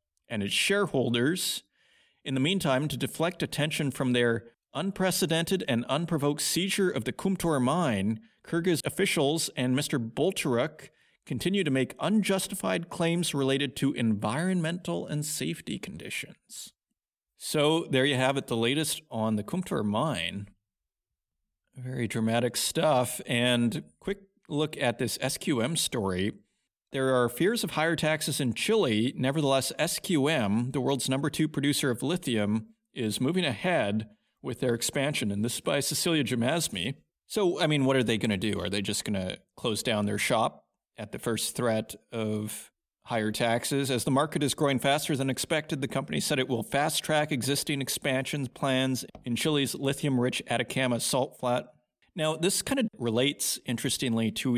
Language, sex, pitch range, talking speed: English, male, 120-155 Hz, 155 wpm